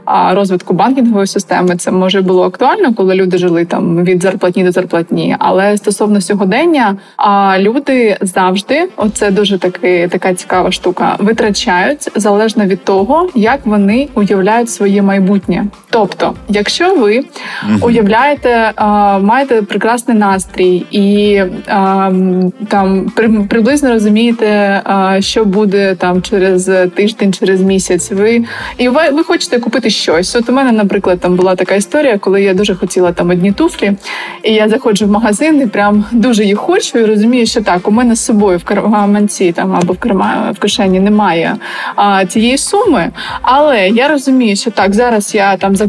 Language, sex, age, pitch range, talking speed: Ukrainian, female, 20-39, 195-235 Hz, 145 wpm